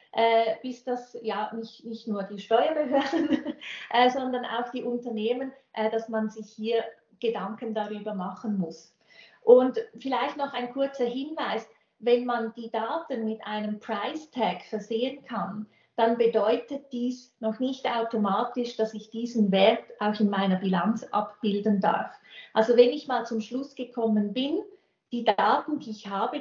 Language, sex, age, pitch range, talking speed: German, female, 30-49, 215-250 Hz, 150 wpm